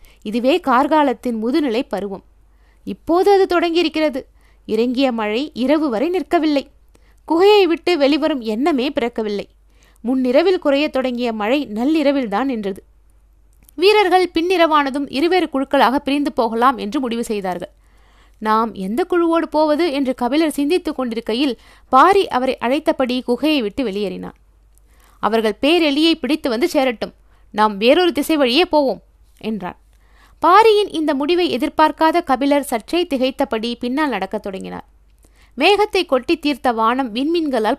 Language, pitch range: Tamil, 235-315 Hz